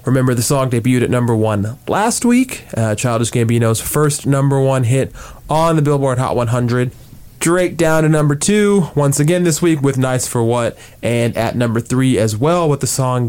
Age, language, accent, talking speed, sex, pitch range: 20-39, English, American, 195 wpm, male, 115-150 Hz